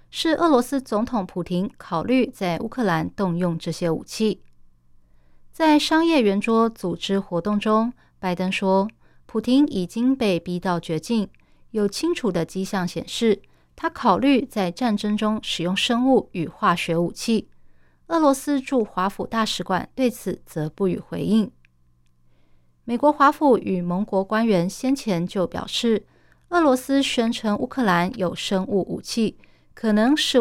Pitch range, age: 180-240 Hz, 20-39